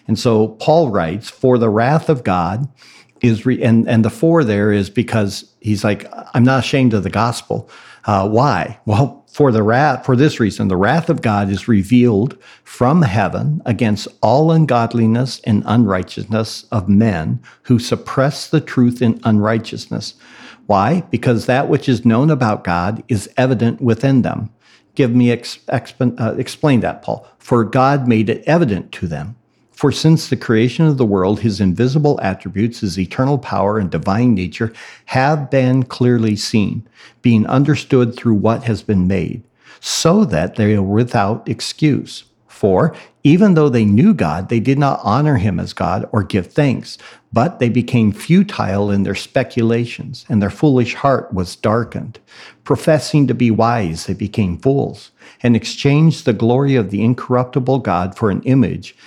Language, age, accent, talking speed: English, 50-69, American, 160 wpm